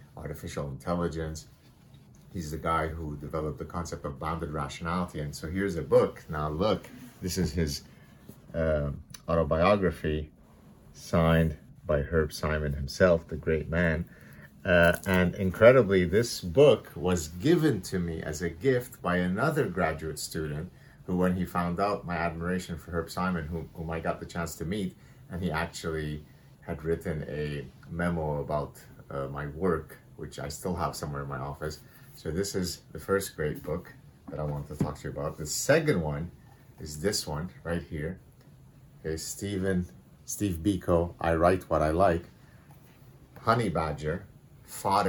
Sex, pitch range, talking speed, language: male, 75-90 Hz, 160 wpm, English